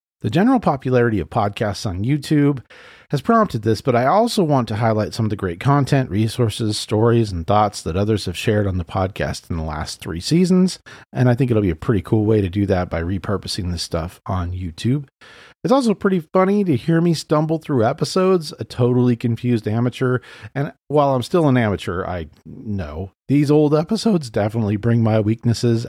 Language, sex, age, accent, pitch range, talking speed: English, male, 40-59, American, 100-145 Hz, 195 wpm